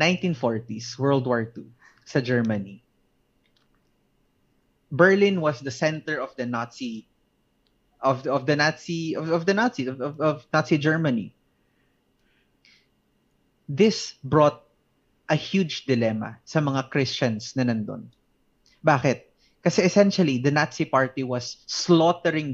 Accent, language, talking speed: native, Filipino, 120 wpm